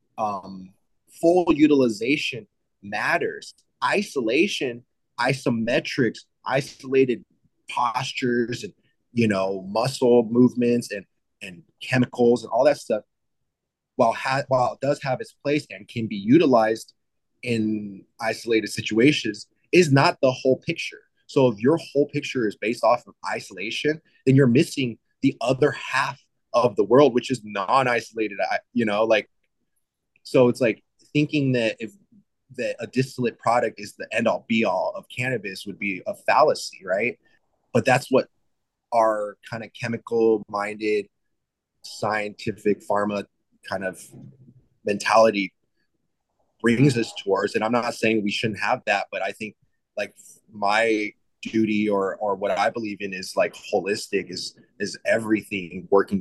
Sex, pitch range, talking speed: male, 105-135 Hz, 135 wpm